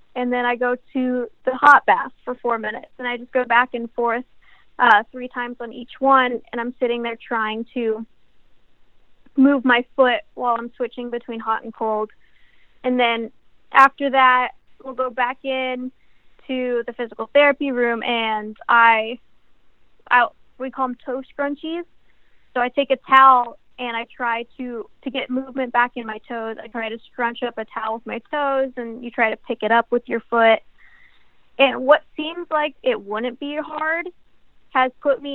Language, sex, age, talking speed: English, female, 20-39, 185 wpm